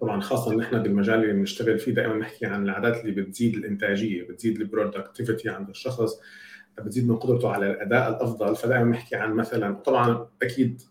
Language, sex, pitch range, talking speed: Arabic, male, 105-125 Hz, 165 wpm